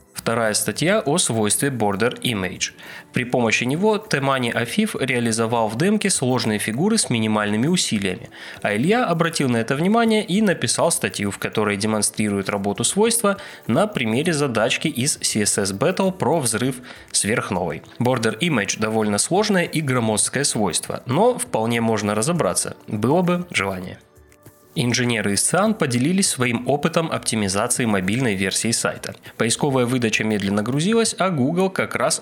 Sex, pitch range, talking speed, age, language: male, 110-170 Hz, 140 wpm, 20-39, Russian